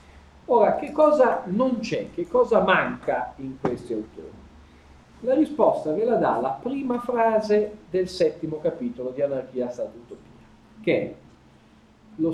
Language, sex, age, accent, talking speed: Italian, male, 40-59, native, 140 wpm